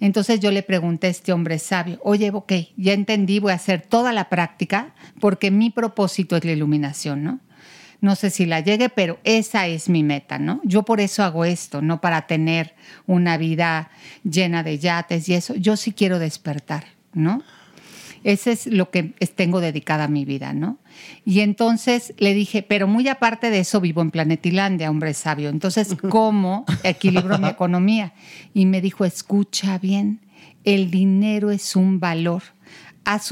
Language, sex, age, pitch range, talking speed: Spanish, female, 50-69, 170-205 Hz, 175 wpm